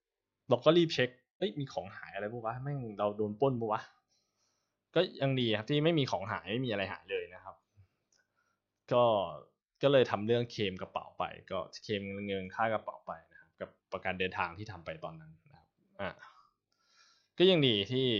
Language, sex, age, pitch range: Thai, male, 20-39, 105-155 Hz